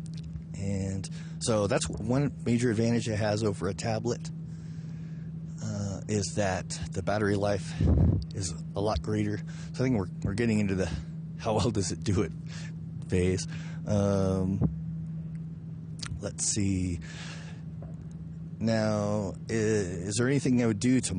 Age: 30-49